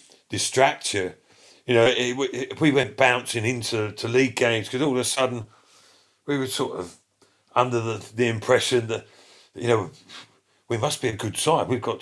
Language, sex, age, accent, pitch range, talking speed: English, male, 50-69, British, 110-130 Hz, 175 wpm